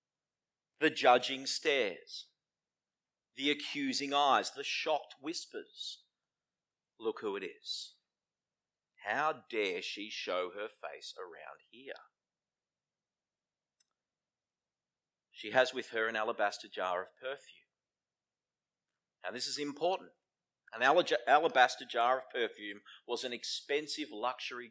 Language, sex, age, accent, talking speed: English, male, 40-59, Australian, 105 wpm